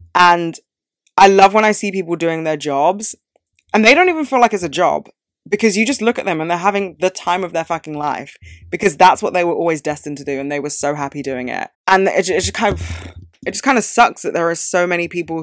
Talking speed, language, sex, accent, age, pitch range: 260 wpm, English, female, British, 20-39, 145-205 Hz